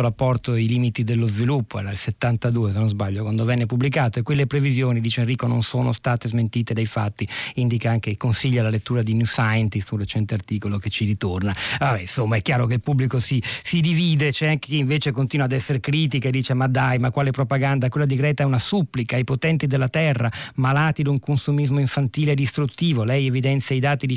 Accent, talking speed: native, 210 wpm